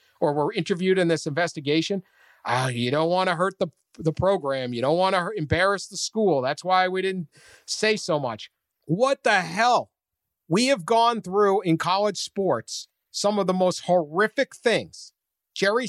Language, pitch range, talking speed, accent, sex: English, 165-230 Hz, 175 wpm, American, male